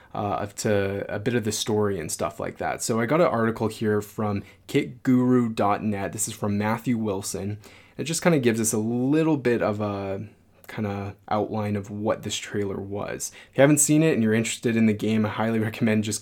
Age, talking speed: 20-39, 215 wpm